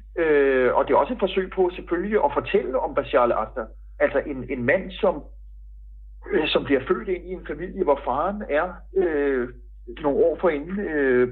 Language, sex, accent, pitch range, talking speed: Danish, male, native, 130-205 Hz, 190 wpm